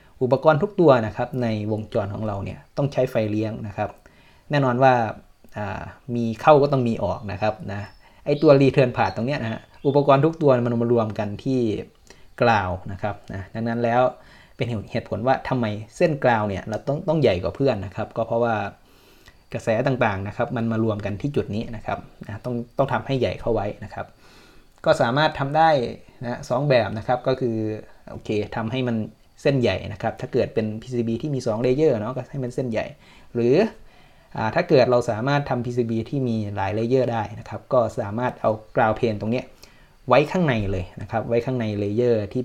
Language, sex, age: Thai, male, 20-39